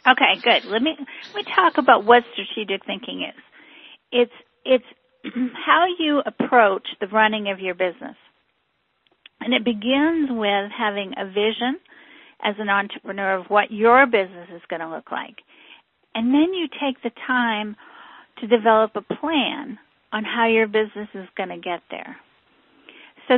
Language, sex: English, female